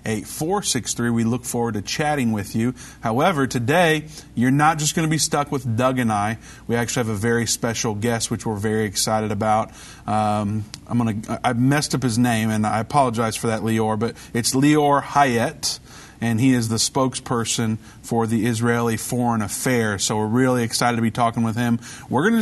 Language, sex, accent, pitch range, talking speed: English, male, American, 115-140 Hz, 200 wpm